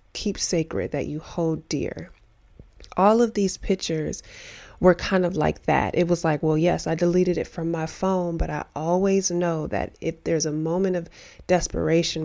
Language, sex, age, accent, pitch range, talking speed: English, female, 30-49, American, 155-175 Hz, 180 wpm